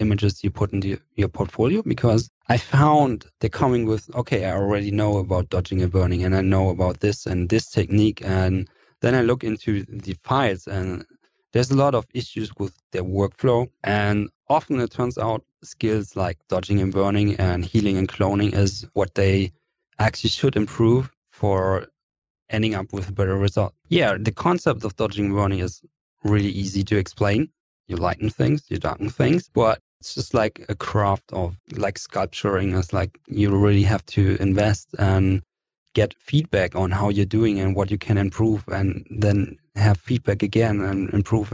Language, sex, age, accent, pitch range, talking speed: English, male, 30-49, German, 95-115 Hz, 180 wpm